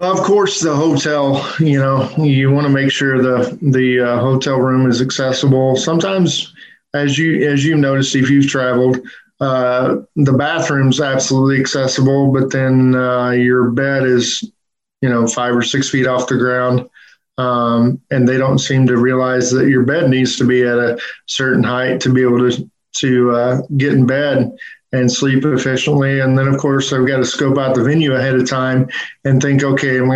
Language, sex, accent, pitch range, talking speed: English, male, American, 130-140 Hz, 190 wpm